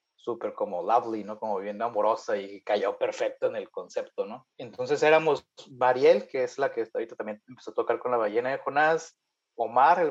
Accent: Mexican